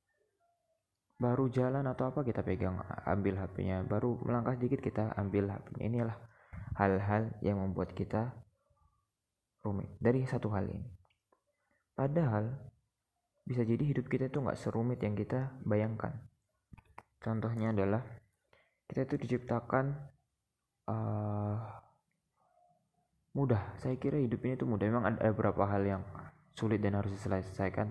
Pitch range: 105-130 Hz